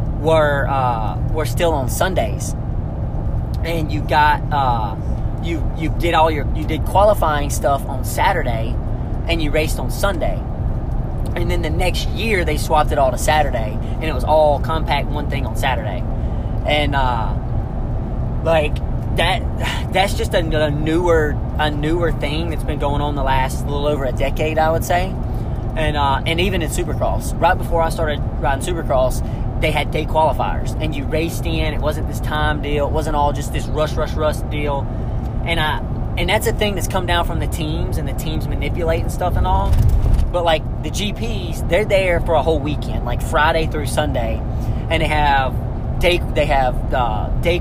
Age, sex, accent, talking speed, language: 30-49, male, American, 185 wpm, English